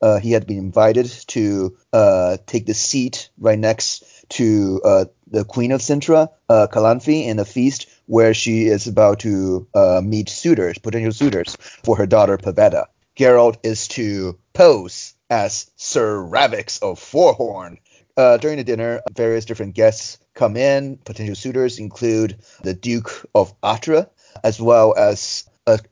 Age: 30-49